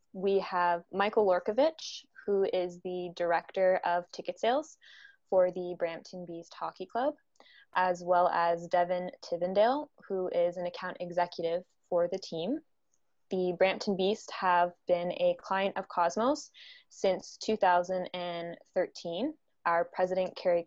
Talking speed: 130 wpm